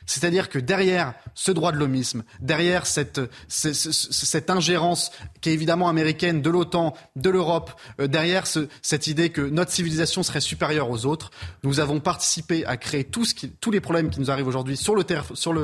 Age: 20-39